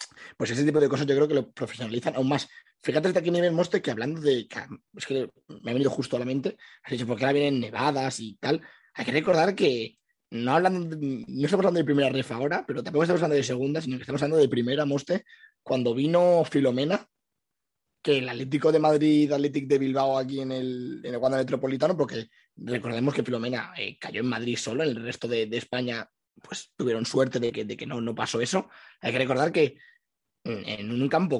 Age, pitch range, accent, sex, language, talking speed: 20-39, 120-145 Hz, Spanish, male, Spanish, 220 wpm